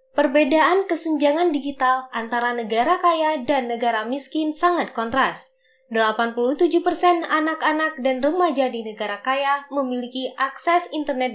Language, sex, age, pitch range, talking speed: Indonesian, female, 20-39, 250-325 Hz, 110 wpm